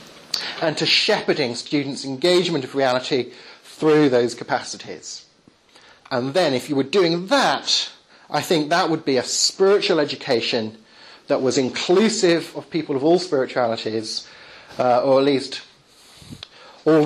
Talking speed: 135 wpm